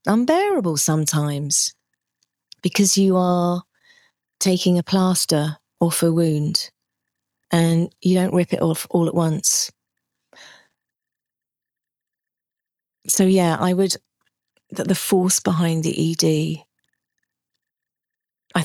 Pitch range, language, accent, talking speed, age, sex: 155-185 Hz, English, British, 100 wpm, 40-59, female